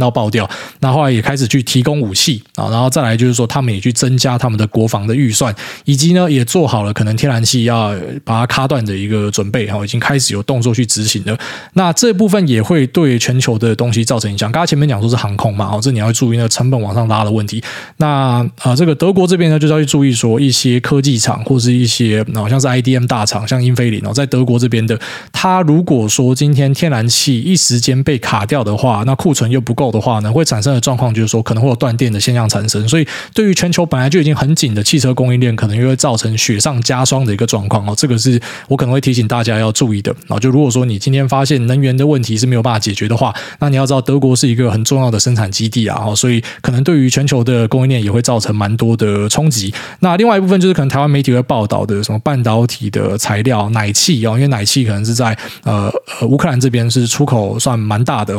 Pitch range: 110-140 Hz